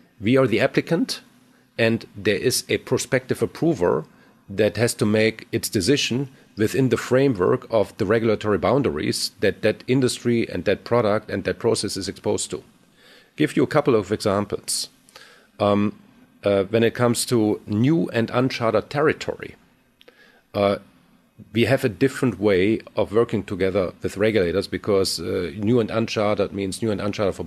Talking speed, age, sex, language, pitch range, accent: 155 wpm, 40-59, male, English, 100-120 Hz, German